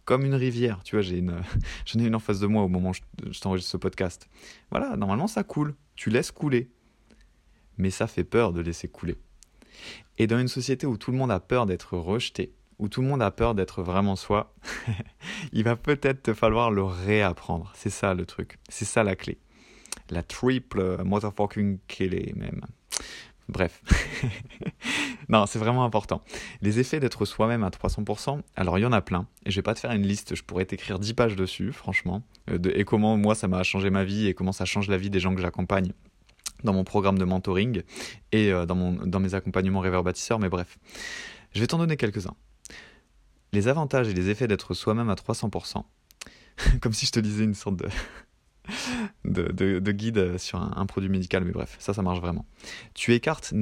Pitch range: 95-115 Hz